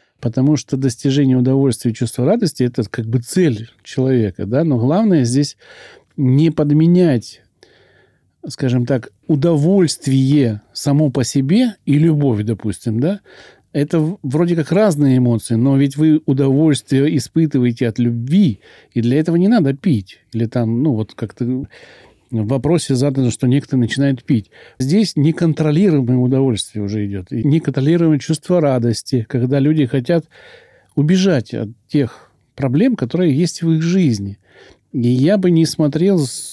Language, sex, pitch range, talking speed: Russian, male, 120-155 Hz, 135 wpm